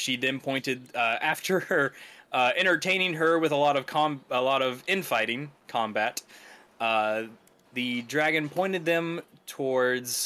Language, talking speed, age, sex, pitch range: English, 145 wpm, 20-39, male, 120-155 Hz